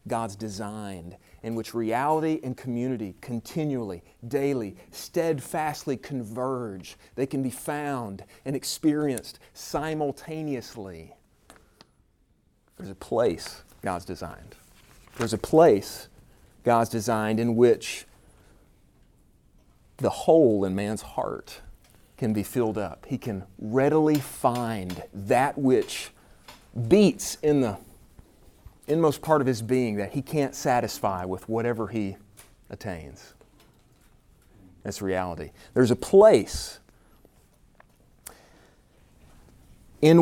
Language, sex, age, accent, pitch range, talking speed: English, male, 40-59, American, 105-140 Hz, 100 wpm